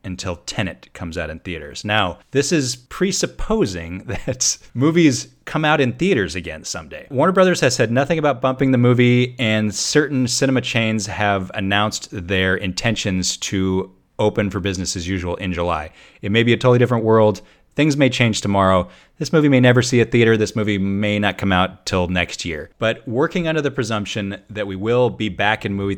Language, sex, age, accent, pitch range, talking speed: English, male, 30-49, American, 90-125 Hz, 190 wpm